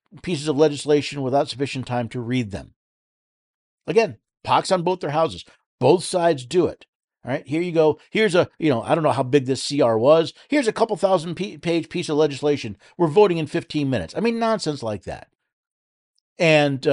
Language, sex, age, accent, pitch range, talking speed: English, male, 50-69, American, 125-170 Hz, 195 wpm